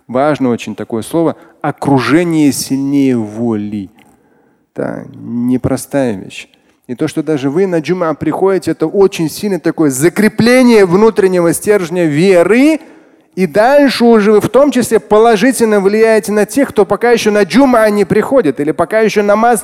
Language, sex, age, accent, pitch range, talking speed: Russian, male, 30-49, native, 125-200 Hz, 155 wpm